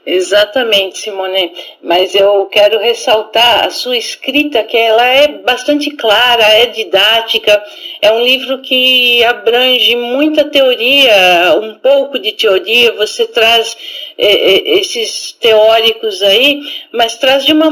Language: Portuguese